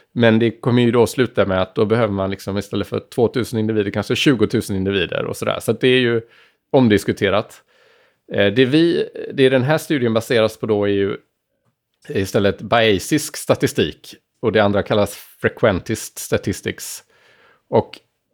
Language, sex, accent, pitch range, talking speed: Swedish, male, Norwegian, 105-130 Hz, 170 wpm